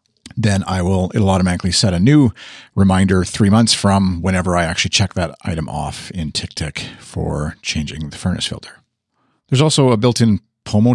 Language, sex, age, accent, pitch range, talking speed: English, male, 40-59, American, 85-110 Hz, 170 wpm